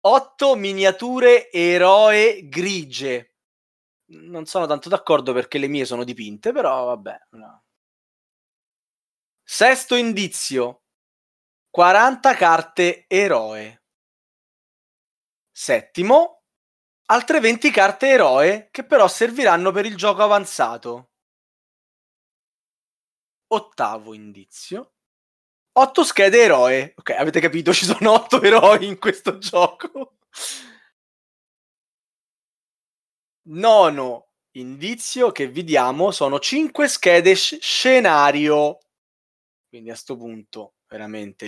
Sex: male